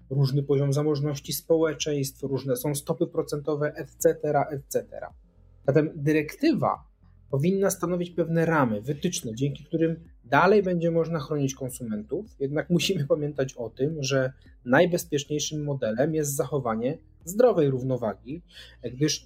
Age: 30-49